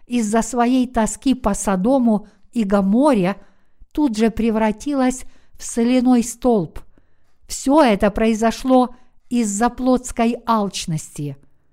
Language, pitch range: Russian, 215-255 Hz